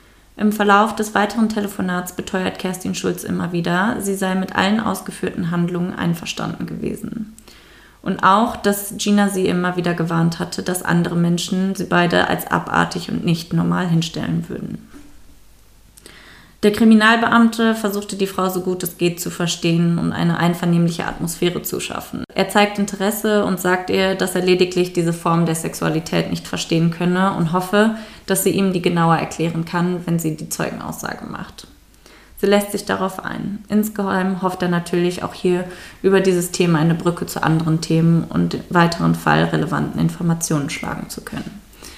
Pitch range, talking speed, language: 165-195 Hz, 160 wpm, German